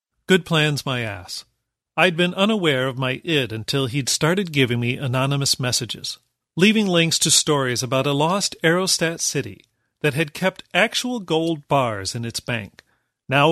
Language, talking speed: English, 160 wpm